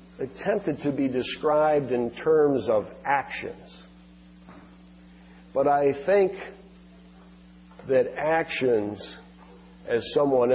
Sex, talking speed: male, 85 wpm